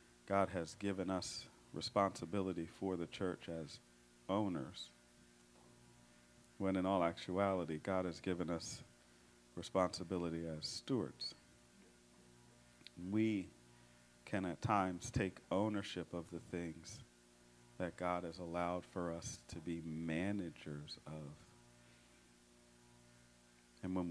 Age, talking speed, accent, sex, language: 50-69, 105 wpm, American, male, English